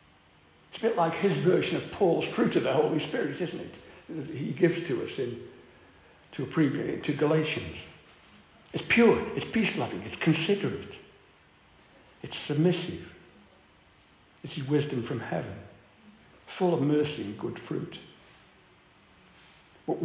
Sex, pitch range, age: male, 145-180 Hz, 60-79